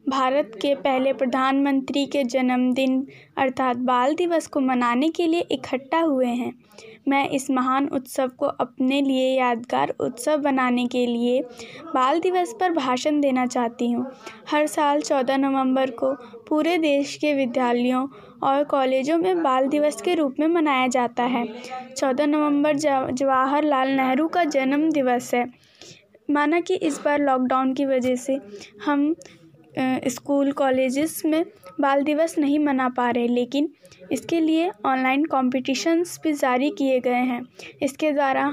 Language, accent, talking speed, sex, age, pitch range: Telugu, native, 145 wpm, female, 20-39, 255-300 Hz